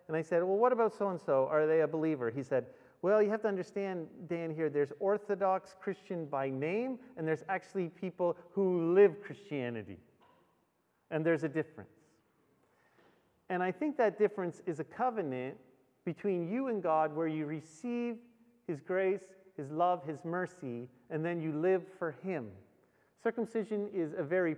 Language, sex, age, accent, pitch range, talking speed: English, male, 40-59, American, 155-210 Hz, 165 wpm